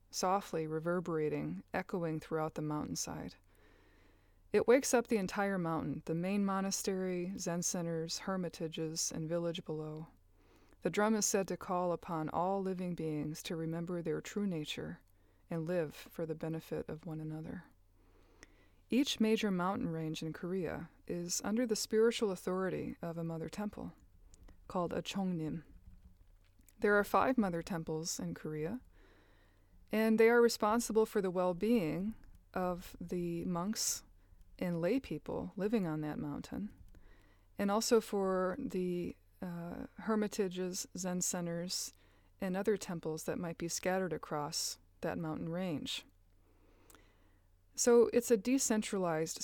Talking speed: 130 wpm